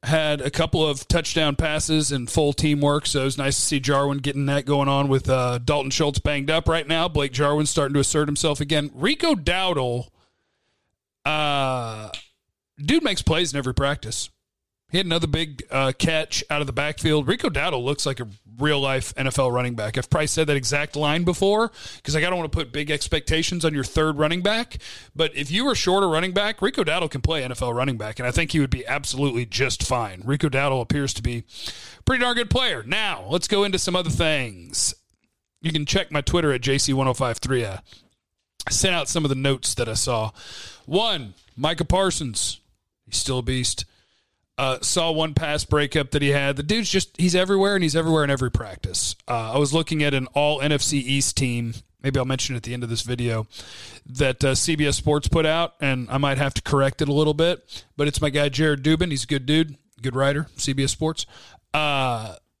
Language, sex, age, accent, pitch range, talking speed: English, male, 40-59, American, 130-155 Hz, 210 wpm